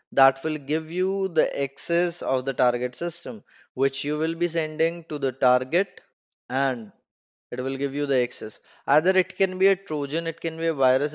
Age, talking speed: 20-39, 195 wpm